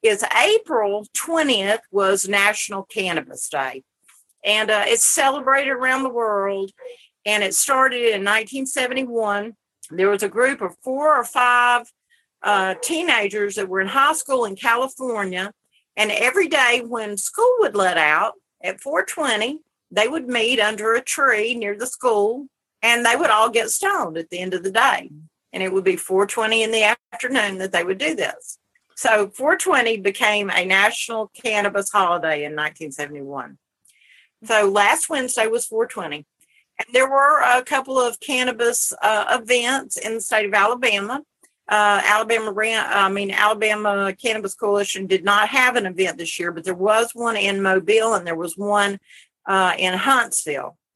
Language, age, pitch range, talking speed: English, 50-69, 200-255 Hz, 160 wpm